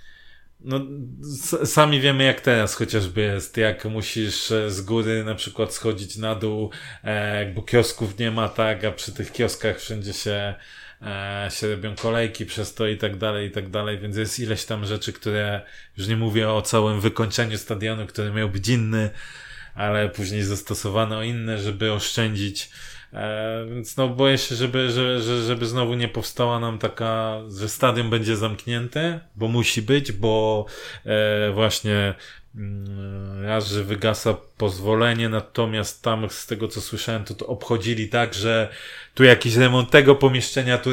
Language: Polish